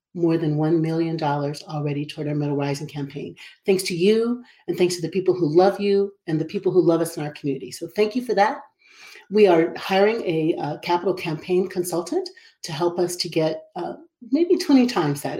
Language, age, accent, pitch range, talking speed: English, 40-59, American, 160-220 Hz, 205 wpm